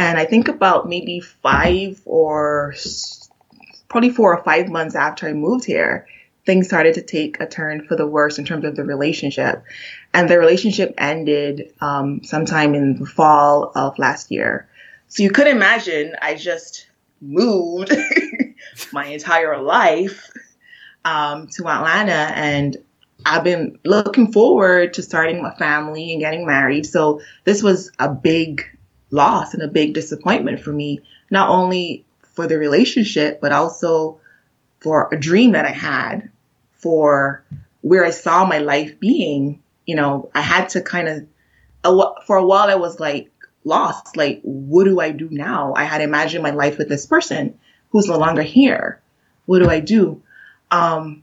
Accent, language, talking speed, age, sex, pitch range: American, English, 160 wpm, 20-39, female, 150-190 Hz